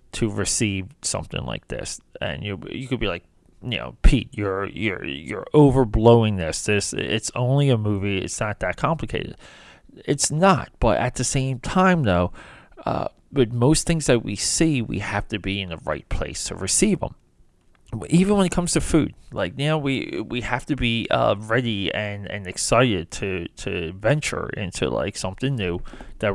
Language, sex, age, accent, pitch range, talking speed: English, male, 30-49, American, 100-135 Hz, 185 wpm